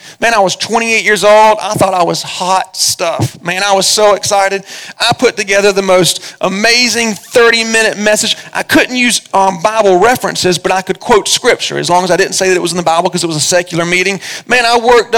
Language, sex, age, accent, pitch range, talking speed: English, male, 40-59, American, 185-225 Hz, 225 wpm